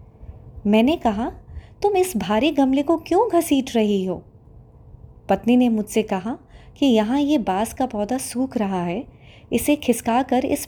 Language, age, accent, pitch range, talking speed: Hindi, 20-39, native, 185-265 Hz, 150 wpm